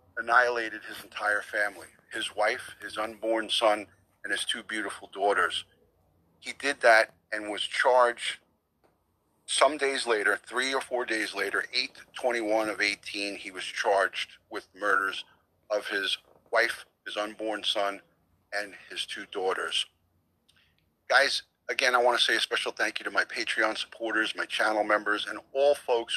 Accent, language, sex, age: American, English, male, 40-59